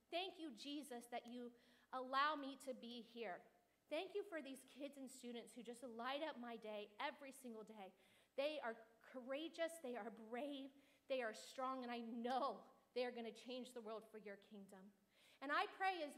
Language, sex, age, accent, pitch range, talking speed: English, female, 40-59, American, 240-320 Hz, 195 wpm